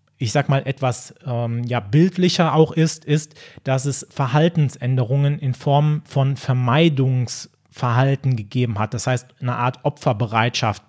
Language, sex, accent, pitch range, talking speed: German, male, German, 130-150 Hz, 130 wpm